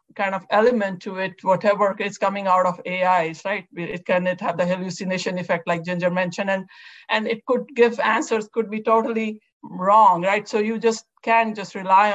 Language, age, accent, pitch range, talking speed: English, 50-69, Indian, 180-225 Hz, 195 wpm